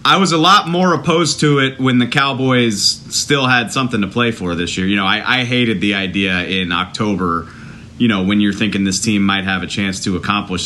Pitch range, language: 95-125 Hz, English